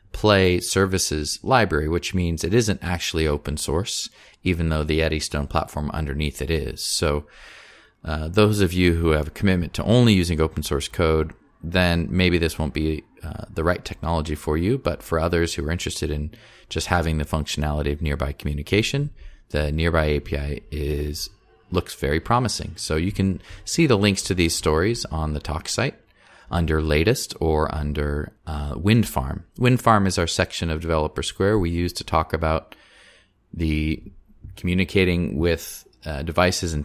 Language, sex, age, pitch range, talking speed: English, male, 30-49, 80-100 Hz, 170 wpm